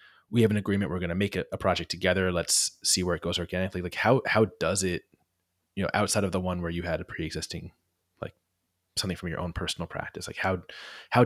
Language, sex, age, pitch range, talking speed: English, male, 20-39, 85-100 Hz, 230 wpm